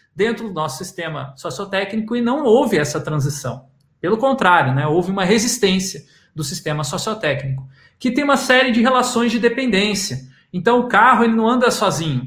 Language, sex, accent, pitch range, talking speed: Portuguese, male, Brazilian, 160-225 Hz, 165 wpm